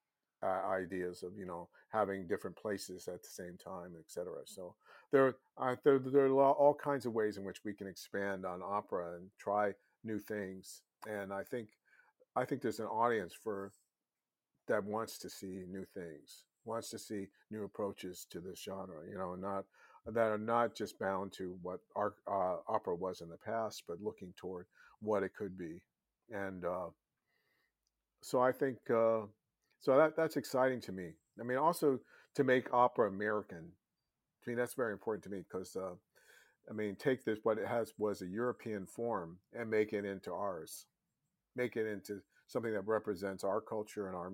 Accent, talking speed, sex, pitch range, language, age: American, 180 wpm, male, 95-115 Hz, English, 50-69